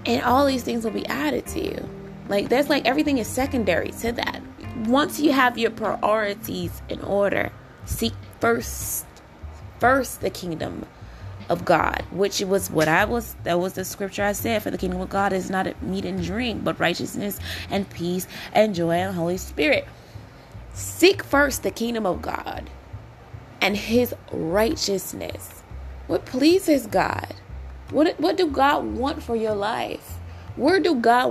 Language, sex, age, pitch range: English, female, 20-39, 185-260 Hz